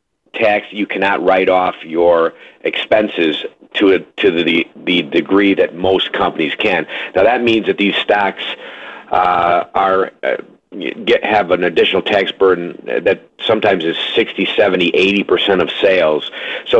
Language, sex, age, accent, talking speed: English, male, 50-69, American, 150 wpm